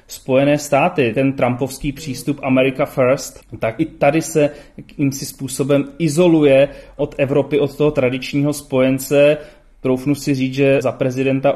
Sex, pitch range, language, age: male, 125-150 Hz, Czech, 30-49